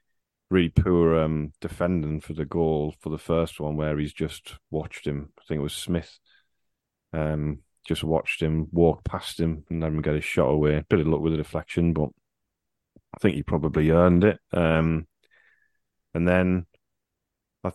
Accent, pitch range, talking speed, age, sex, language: British, 80-90 Hz, 180 wpm, 30-49, male, English